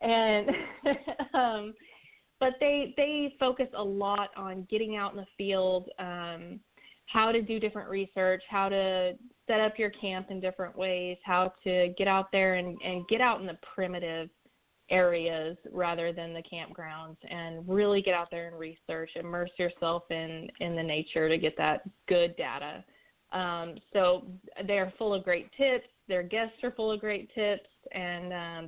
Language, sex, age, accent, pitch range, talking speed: English, female, 20-39, American, 170-210 Hz, 170 wpm